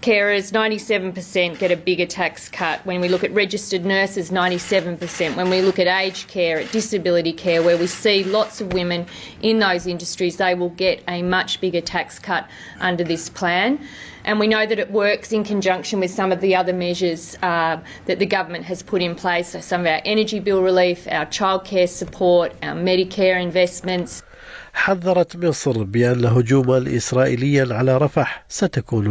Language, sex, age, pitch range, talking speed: Arabic, female, 40-59, 120-185 Hz, 175 wpm